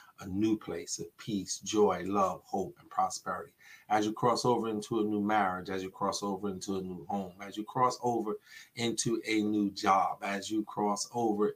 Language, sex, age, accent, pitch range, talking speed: English, male, 30-49, American, 100-110 Hz, 195 wpm